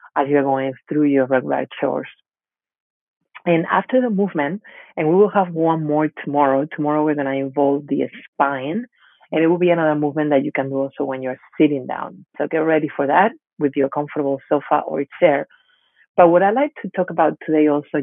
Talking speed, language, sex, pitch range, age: 200 wpm, English, female, 135-165 Hz, 40-59